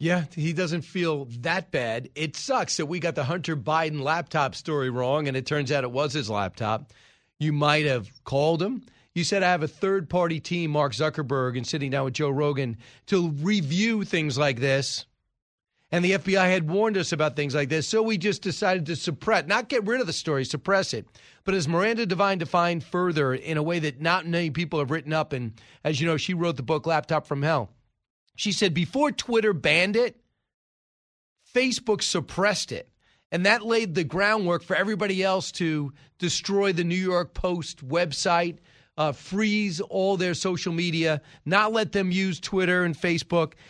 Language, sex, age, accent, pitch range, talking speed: English, male, 40-59, American, 150-195 Hz, 190 wpm